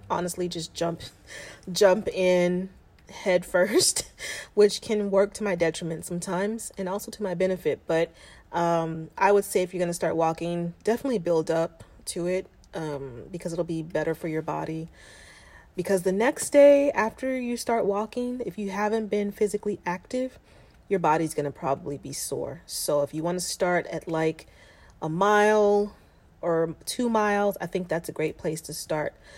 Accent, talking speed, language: American, 170 wpm, English